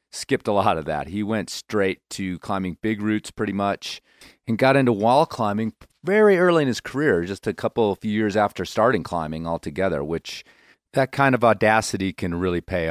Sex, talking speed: male, 195 wpm